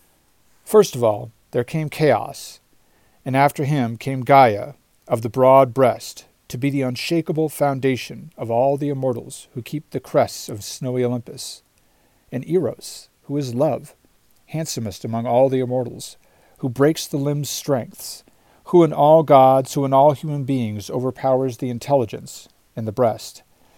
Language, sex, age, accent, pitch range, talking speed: English, male, 50-69, American, 110-140 Hz, 155 wpm